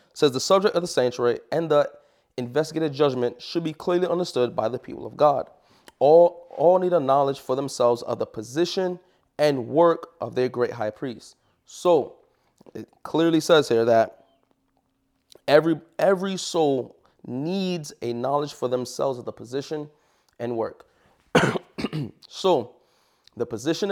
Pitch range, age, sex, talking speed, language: 120-165 Hz, 20-39, male, 145 wpm, English